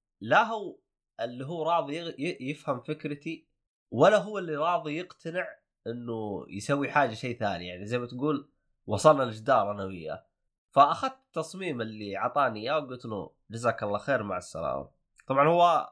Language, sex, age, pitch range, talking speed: Arabic, male, 20-39, 110-150 Hz, 145 wpm